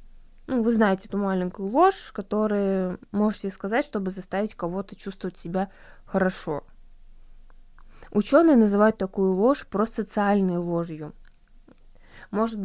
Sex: female